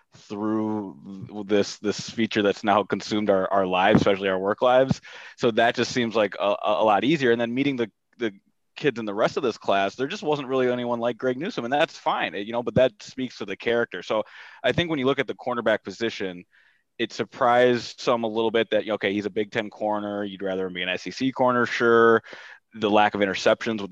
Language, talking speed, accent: English, 225 wpm, American